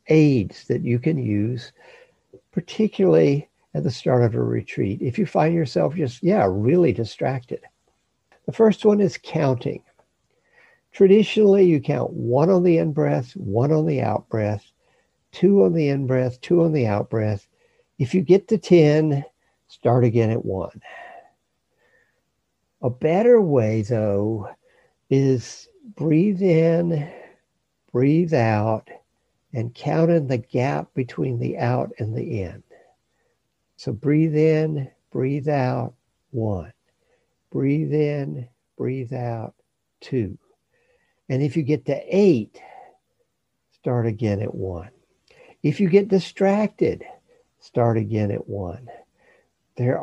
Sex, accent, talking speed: male, American, 125 wpm